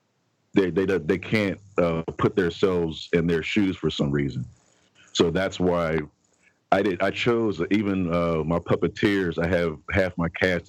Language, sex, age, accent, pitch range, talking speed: English, male, 40-59, American, 75-95 Hz, 165 wpm